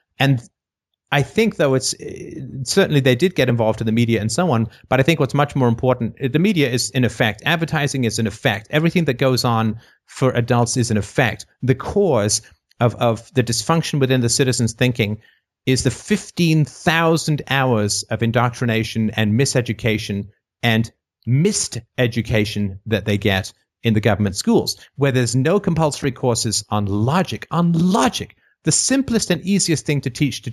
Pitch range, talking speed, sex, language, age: 110-155 Hz, 170 wpm, male, English, 50-69